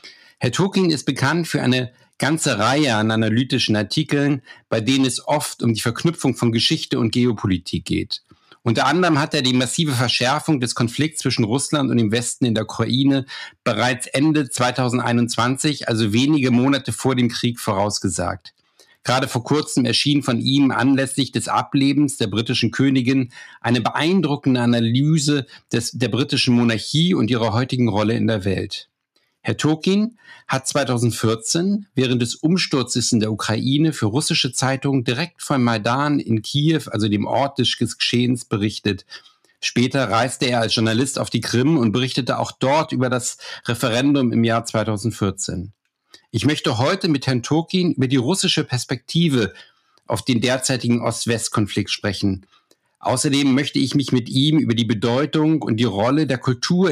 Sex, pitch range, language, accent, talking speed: male, 115-145 Hz, German, German, 155 wpm